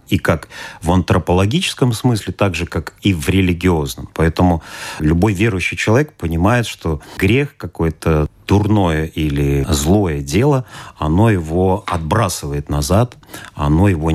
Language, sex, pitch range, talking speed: Russian, male, 80-110 Hz, 125 wpm